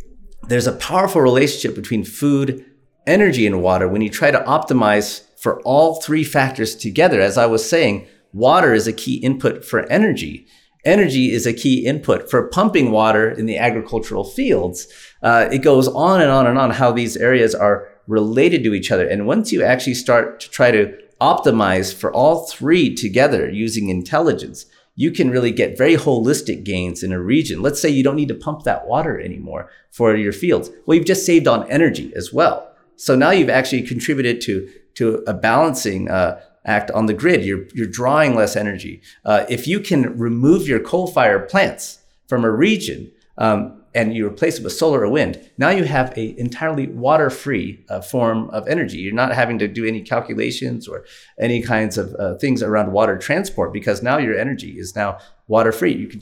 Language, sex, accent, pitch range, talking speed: English, male, American, 105-135 Hz, 190 wpm